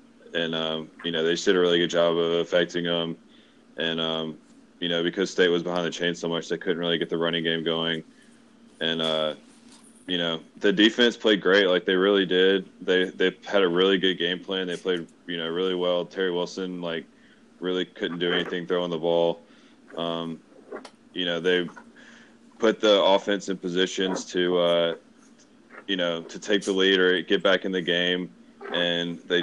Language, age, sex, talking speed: English, 20-39, male, 195 wpm